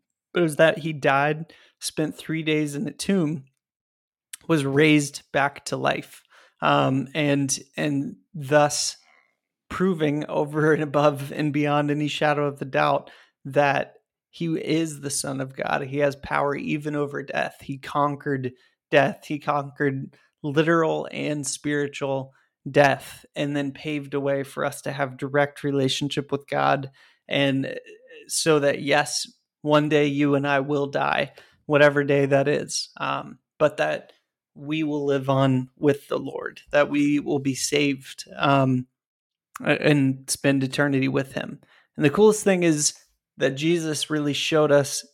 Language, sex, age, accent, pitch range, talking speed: English, male, 30-49, American, 140-155 Hz, 150 wpm